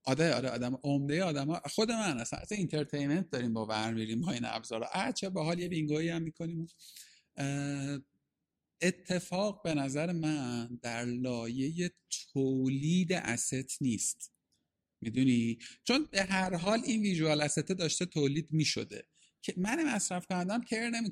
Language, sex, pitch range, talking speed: Persian, male, 130-180 Hz, 150 wpm